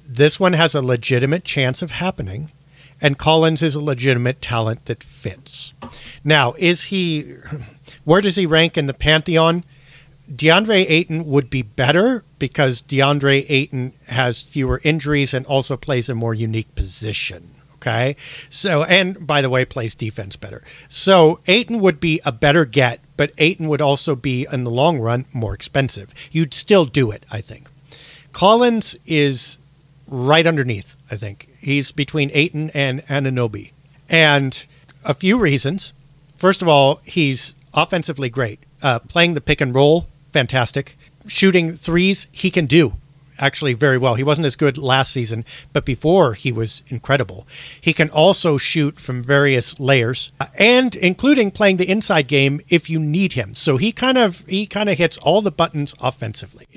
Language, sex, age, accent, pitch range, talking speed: English, male, 50-69, American, 135-165 Hz, 165 wpm